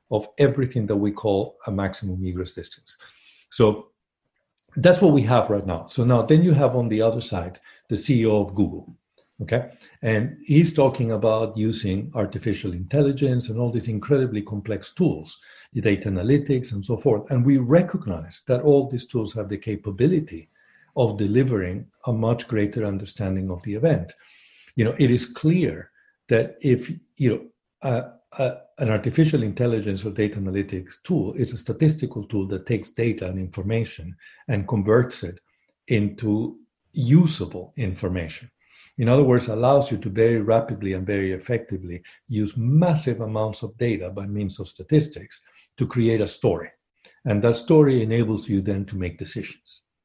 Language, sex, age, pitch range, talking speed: English, male, 50-69, 100-125 Hz, 160 wpm